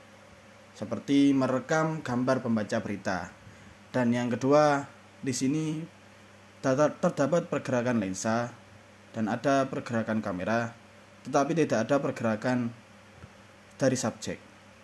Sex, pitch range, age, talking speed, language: male, 105-135 Hz, 20-39, 95 wpm, Indonesian